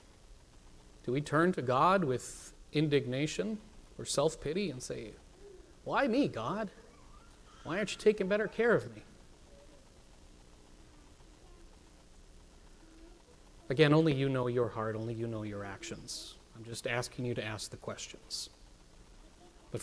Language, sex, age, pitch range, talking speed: English, male, 40-59, 105-150 Hz, 125 wpm